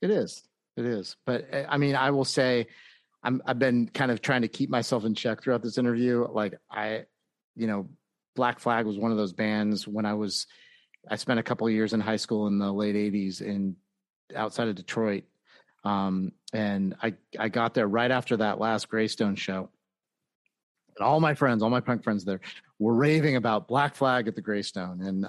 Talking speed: 200 wpm